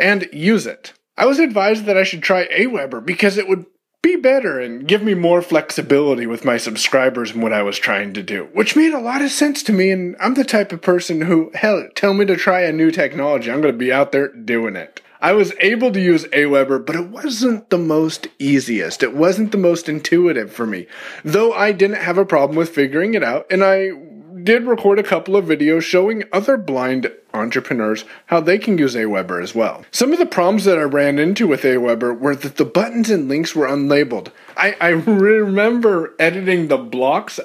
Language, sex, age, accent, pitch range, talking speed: English, male, 30-49, American, 140-205 Hz, 215 wpm